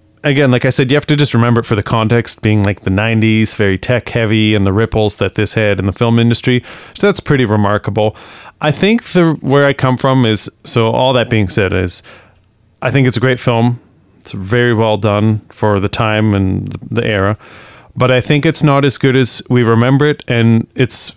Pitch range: 110-135 Hz